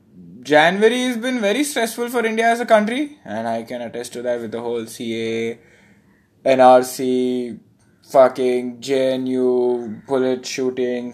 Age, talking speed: 20-39, 135 wpm